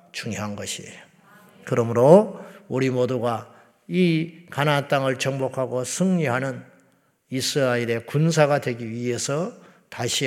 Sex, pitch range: male, 120-165 Hz